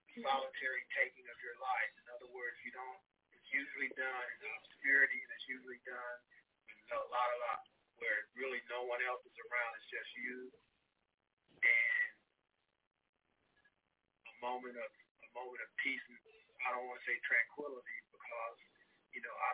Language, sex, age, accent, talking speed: English, male, 40-59, American, 165 wpm